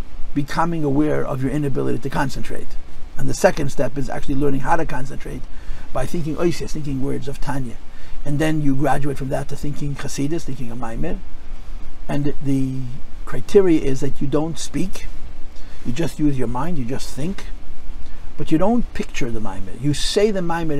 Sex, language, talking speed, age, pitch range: male, English, 175 wpm, 50-69, 105-150 Hz